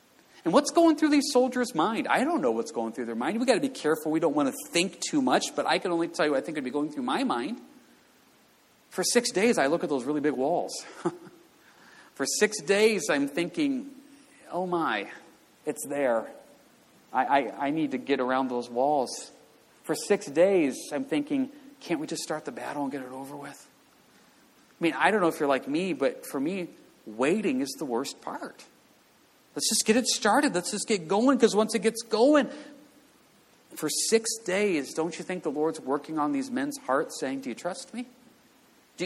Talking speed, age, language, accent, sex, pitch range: 210 wpm, 40-59, English, American, male, 170-250 Hz